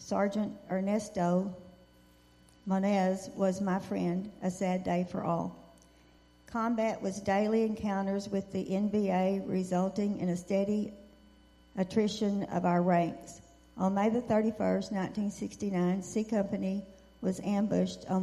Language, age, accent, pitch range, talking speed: English, 60-79, American, 185-205 Hz, 120 wpm